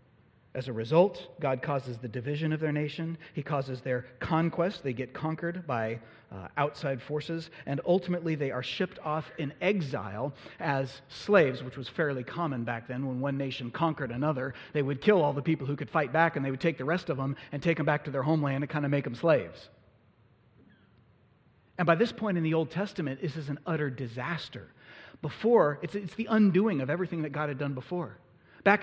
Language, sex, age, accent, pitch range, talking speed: English, male, 30-49, American, 140-190 Hz, 205 wpm